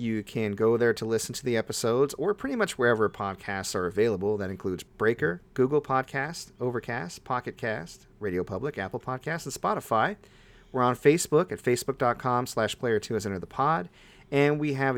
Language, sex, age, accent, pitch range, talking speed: English, male, 40-59, American, 105-145 Hz, 170 wpm